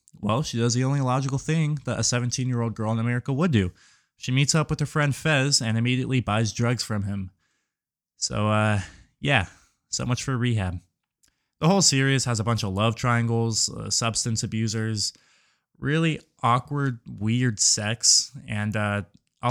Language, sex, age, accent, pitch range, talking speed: English, male, 20-39, American, 110-135 Hz, 165 wpm